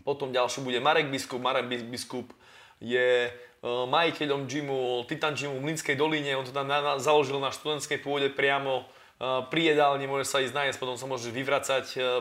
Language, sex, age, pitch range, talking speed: Slovak, male, 20-39, 125-145 Hz, 170 wpm